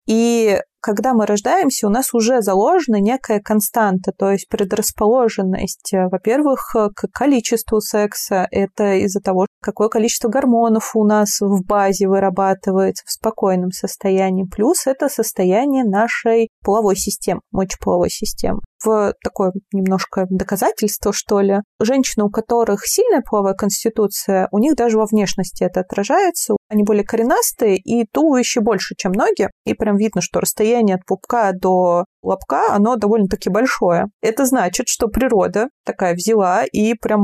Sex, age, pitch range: female, 30-49, 195-235 Hz